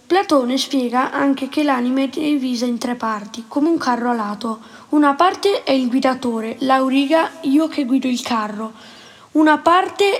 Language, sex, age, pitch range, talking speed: Italian, female, 20-39, 235-290 Hz, 160 wpm